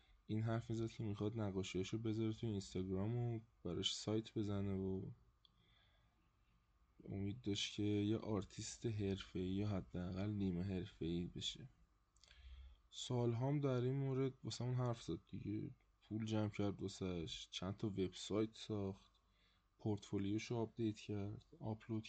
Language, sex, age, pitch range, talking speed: Persian, male, 20-39, 95-120 Hz, 135 wpm